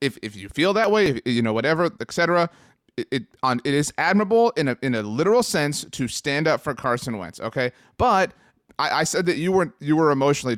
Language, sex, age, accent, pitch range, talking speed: English, male, 30-49, American, 115-160 Hz, 225 wpm